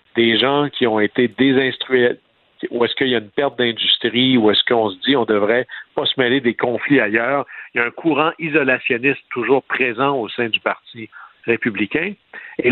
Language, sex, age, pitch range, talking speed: French, male, 60-79, 115-145 Hz, 200 wpm